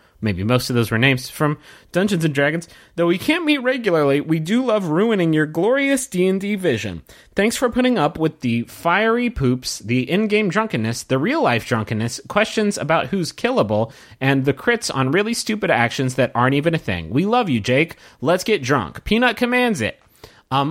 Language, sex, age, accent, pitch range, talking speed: English, male, 30-49, American, 120-195 Hz, 185 wpm